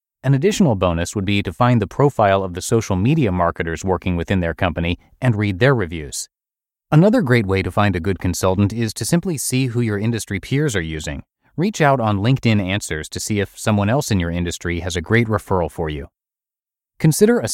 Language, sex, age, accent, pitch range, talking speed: English, male, 30-49, American, 90-125 Hz, 210 wpm